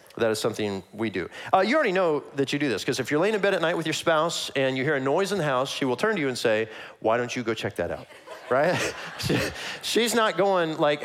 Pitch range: 140-205 Hz